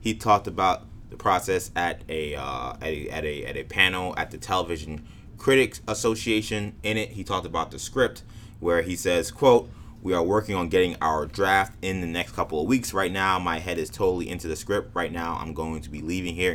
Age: 20-39